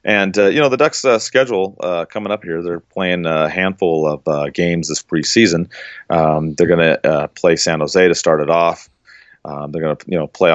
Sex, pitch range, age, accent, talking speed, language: male, 80-100 Hz, 30-49, American, 230 wpm, English